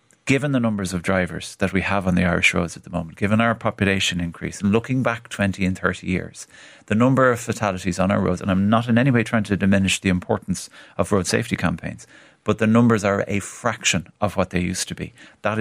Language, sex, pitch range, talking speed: English, male, 90-110 Hz, 235 wpm